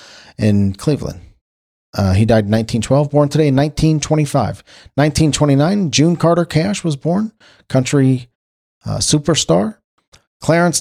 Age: 40-59